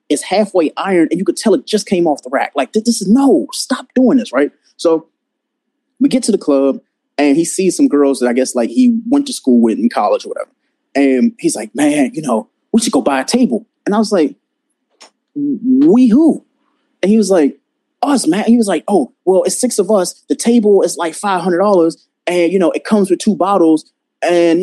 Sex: male